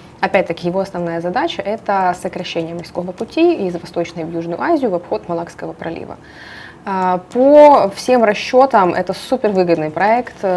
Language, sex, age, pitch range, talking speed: Russian, female, 20-39, 170-210 Hz, 130 wpm